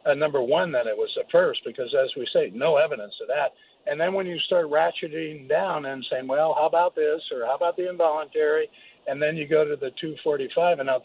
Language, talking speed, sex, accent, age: English, 235 wpm, male, American, 60-79